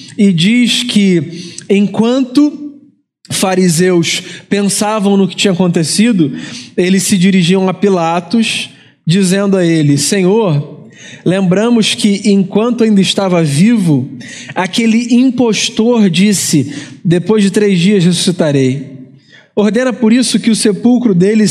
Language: Portuguese